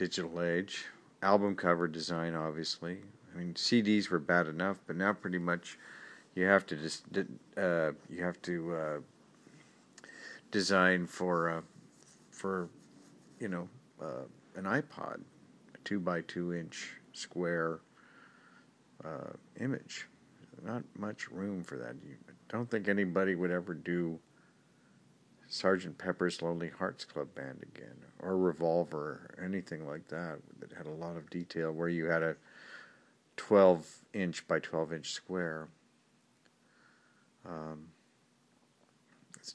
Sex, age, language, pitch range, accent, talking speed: male, 50-69, English, 80-90 Hz, American, 125 wpm